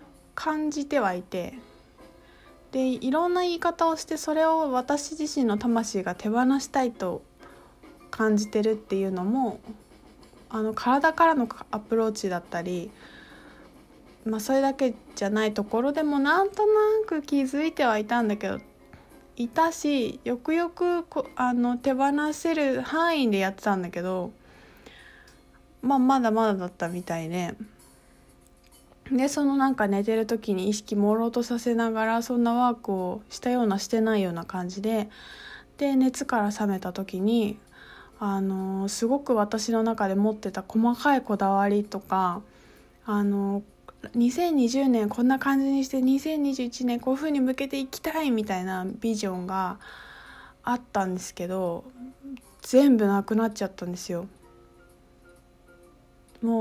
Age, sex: 20-39, female